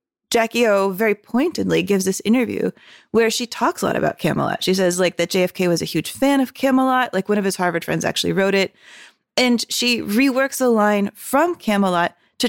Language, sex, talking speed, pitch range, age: English, female, 200 wpm, 185-235 Hz, 20-39